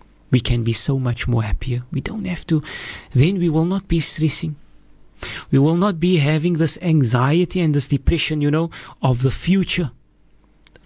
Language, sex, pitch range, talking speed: English, male, 125-170 Hz, 180 wpm